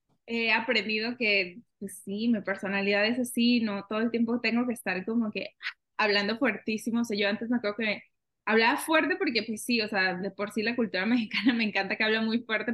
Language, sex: Spanish, female